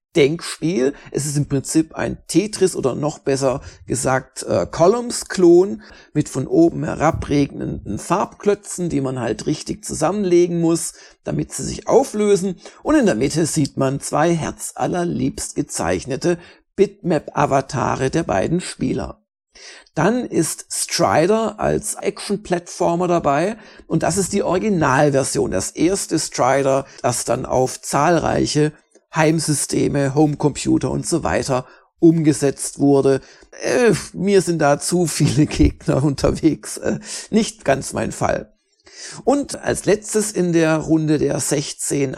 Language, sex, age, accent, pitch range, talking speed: German, male, 60-79, German, 145-185 Hz, 125 wpm